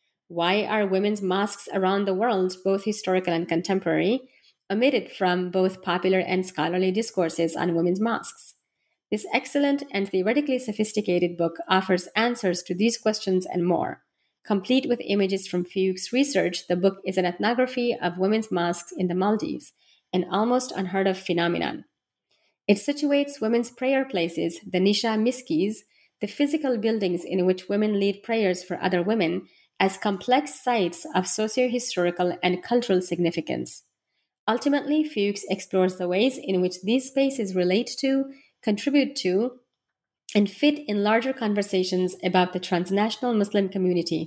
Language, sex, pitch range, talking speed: English, female, 180-225 Hz, 145 wpm